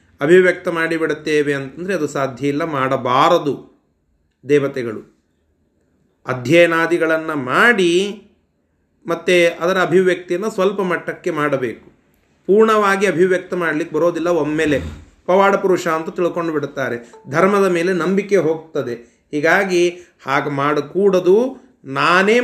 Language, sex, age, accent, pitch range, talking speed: Kannada, male, 30-49, native, 150-185 Hz, 90 wpm